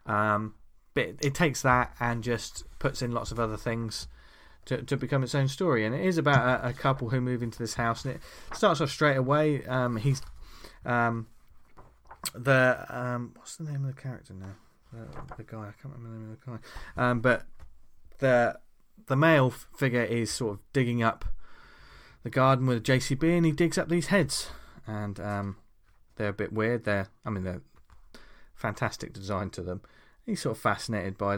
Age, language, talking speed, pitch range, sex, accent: 20-39, English, 195 wpm, 100-130 Hz, male, British